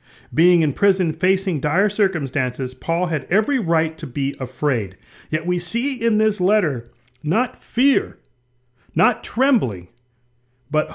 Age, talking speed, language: 40-59, 130 wpm, English